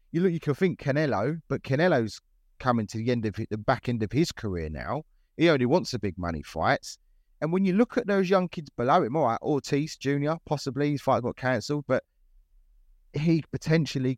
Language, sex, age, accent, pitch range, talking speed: English, male, 30-49, British, 125-170 Hz, 210 wpm